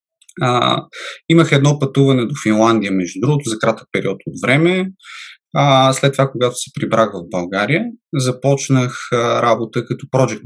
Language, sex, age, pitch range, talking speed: Bulgarian, male, 20-39, 115-150 Hz, 130 wpm